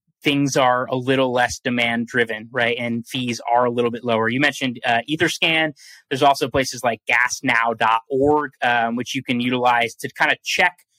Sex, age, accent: male, 20-39, American